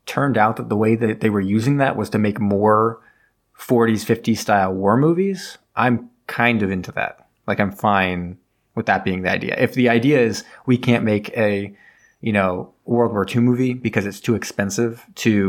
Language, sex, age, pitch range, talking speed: English, male, 20-39, 100-120 Hz, 200 wpm